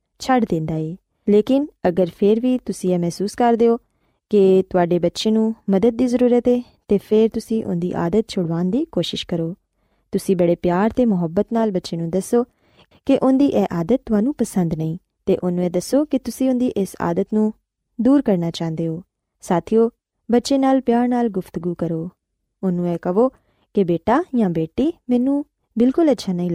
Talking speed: 170 wpm